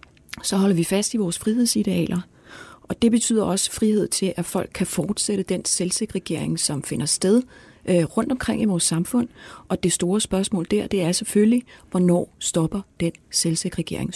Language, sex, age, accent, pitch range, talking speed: Danish, female, 30-49, native, 170-205 Hz, 170 wpm